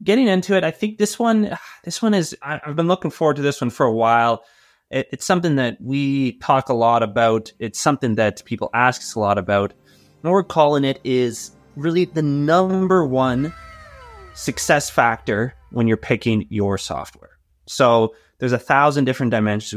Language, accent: English, American